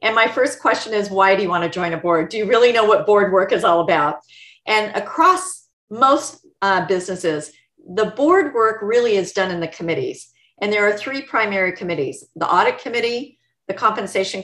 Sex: female